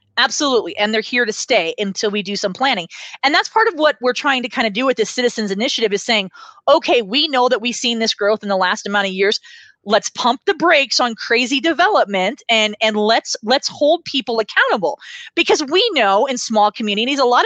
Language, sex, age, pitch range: English, female, 30-49, 210-285 Hz